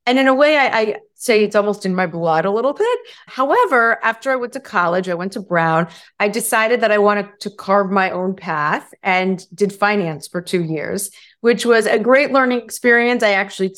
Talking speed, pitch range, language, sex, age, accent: 215 wpm, 180-225 Hz, English, female, 30-49, American